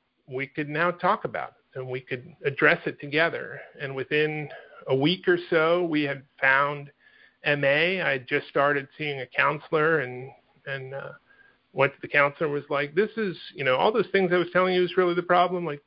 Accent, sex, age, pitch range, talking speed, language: American, male, 50-69, 145-180 Hz, 210 wpm, English